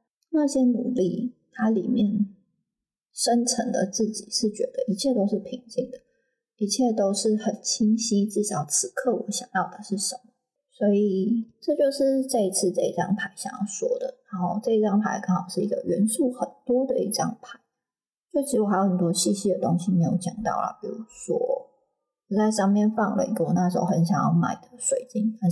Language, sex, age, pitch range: Chinese, female, 20-39, 190-245 Hz